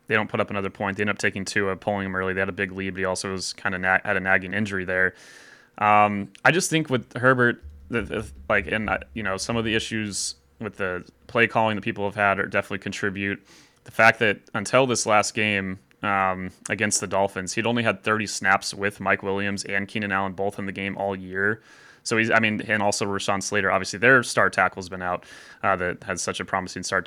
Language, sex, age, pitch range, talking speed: English, male, 20-39, 95-110 Hz, 230 wpm